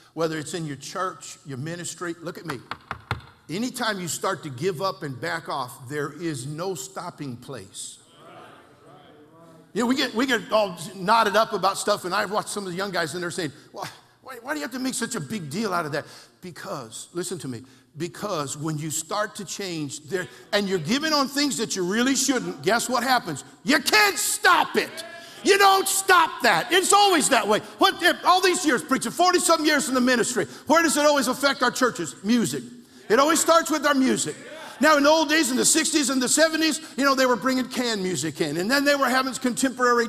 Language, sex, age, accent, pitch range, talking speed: English, male, 50-69, American, 190-320 Hz, 220 wpm